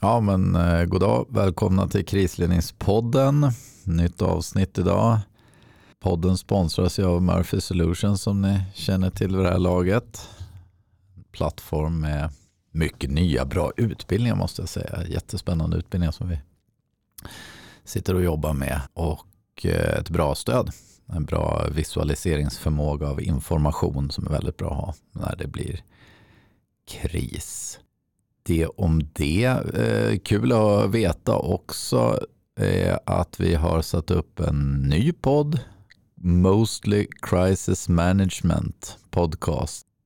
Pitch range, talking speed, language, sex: 80-105 Hz, 120 wpm, English, male